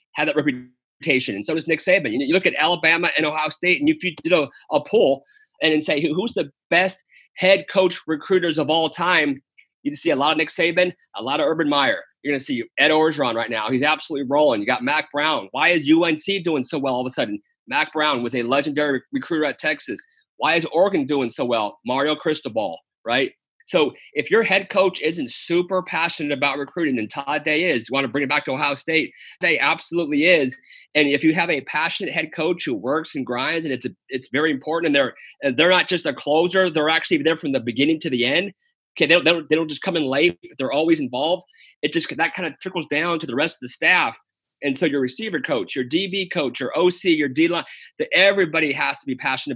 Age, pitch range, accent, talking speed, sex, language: 30-49, 145-180 Hz, American, 240 wpm, male, English